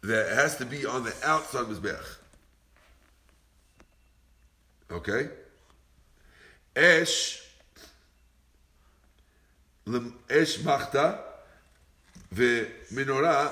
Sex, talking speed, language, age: male, 60 wpm, English, 60-79